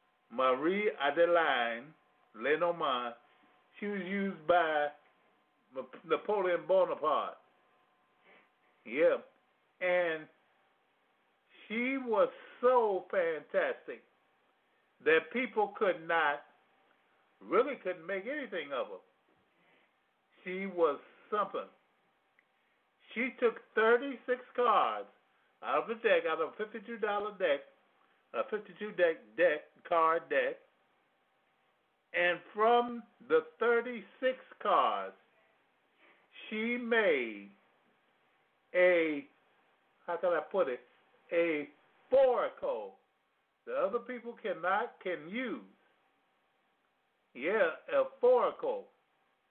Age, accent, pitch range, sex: 50-69, American, 175-275 Hz, male